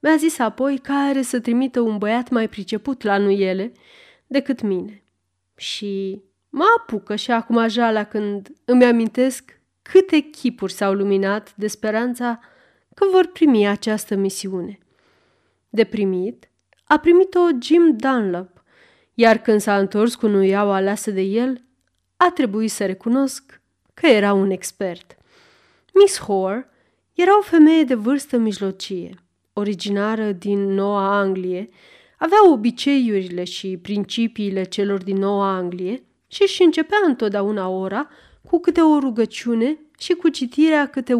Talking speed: 135 wpm